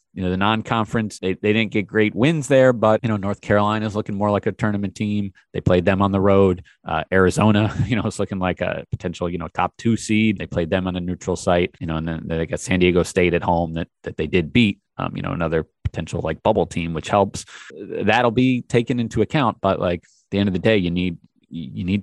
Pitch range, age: 90-105 Hz, 30-49